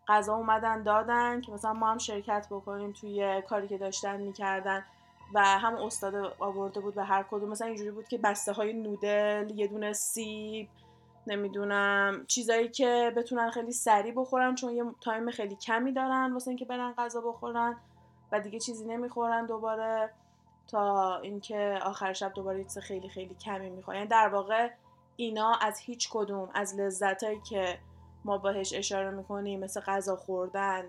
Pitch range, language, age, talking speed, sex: 200-225 Hz, Persian, 20-39, 155 wpm, female